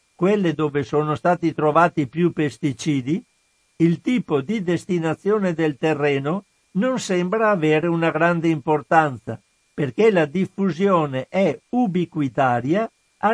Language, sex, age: Italian, male, 60-79